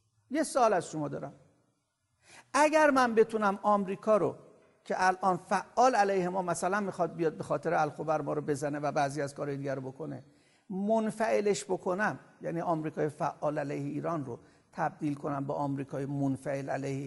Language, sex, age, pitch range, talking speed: Persian, male, 50-69, 150-215 Hz, 155 wpm